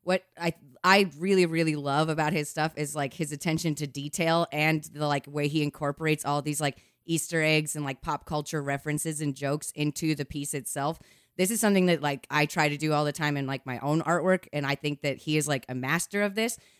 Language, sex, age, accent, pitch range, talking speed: English, female, 20-39, American, 145-165 Hz, 230 wpm